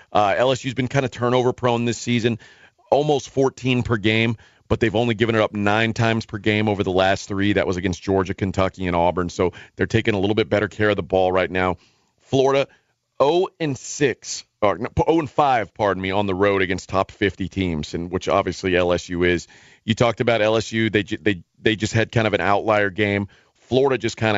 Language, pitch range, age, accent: English, 100-120 Hz, 40-59, American